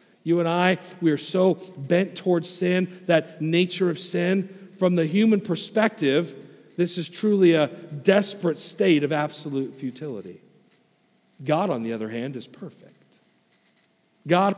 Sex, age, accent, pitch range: male, 40-59, American, 150-195 Hz